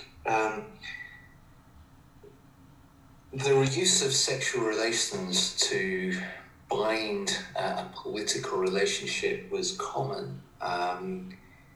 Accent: British